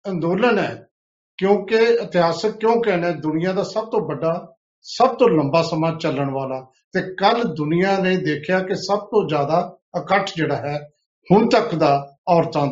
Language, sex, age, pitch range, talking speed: Punjabi, male, 50-69, 150-205 Hz, 155 wpm